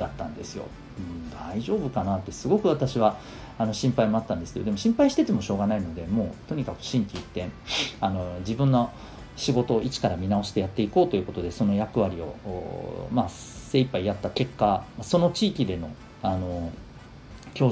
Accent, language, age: native, Japanese, 40-59